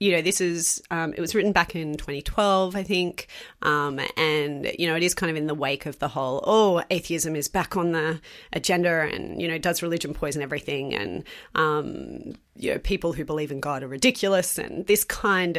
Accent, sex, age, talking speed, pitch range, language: Australian, female, 30-49, 210 wpm, 150-190 Hz, English